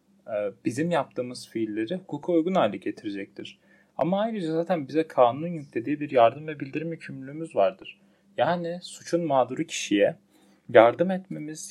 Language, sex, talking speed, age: Turkish, male, 130 wpm, 30-49